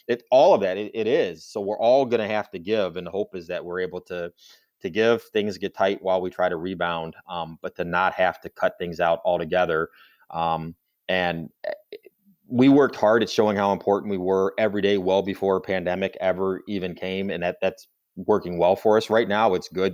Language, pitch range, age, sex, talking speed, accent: English, 85-105 Hz, 30-49, male, 220 wpm, American